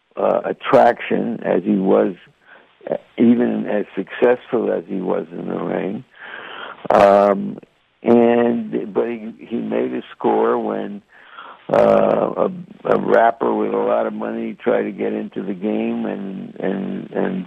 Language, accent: English, American